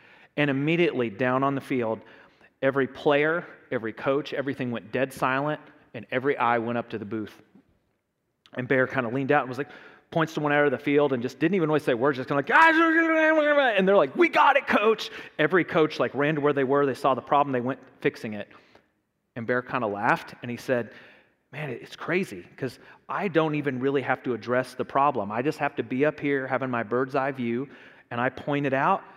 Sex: male